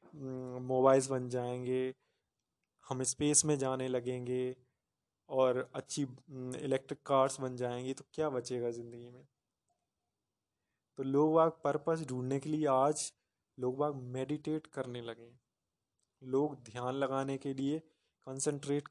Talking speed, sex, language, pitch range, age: 120 wpm, male, Hindi, 125-140 Hz, 20-39